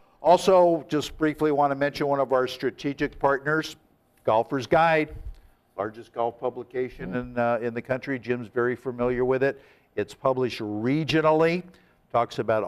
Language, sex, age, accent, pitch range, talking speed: English, male, 60-79, American, 105-130 Hz, 145 wpm